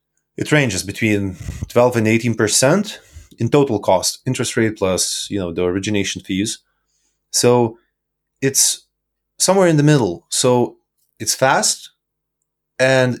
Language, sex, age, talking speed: Romanian, male, 20-39, 125 wpm